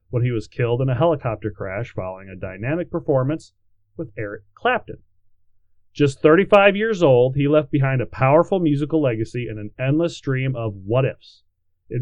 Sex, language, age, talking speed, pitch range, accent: male, English, 30-49, 165 wpm, 110-155 Hz, American